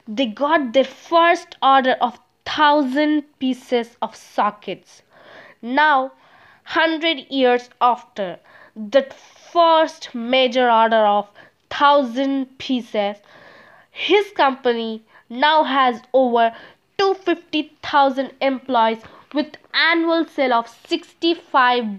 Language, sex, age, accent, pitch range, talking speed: Telugu, female, 20-39, native, 230-320 Hz, 90 wpm